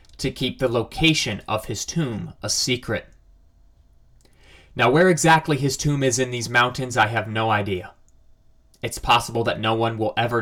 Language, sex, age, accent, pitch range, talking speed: English, male, 30-49, American, 95-130 Hz, 165 wpm